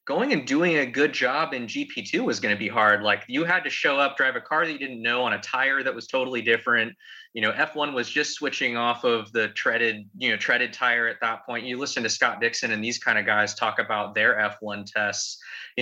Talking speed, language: 260 wpm, English